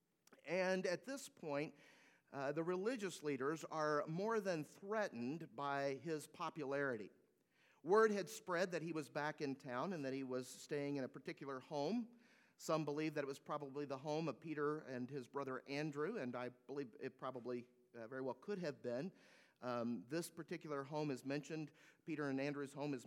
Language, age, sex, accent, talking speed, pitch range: English, 40-59, male, American, 180 wpm, 135-185 Hz